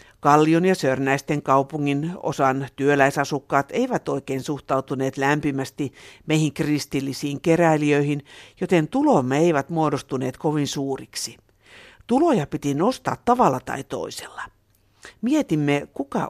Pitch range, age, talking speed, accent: 135-170 Hz, 60-79, 100 wpm, native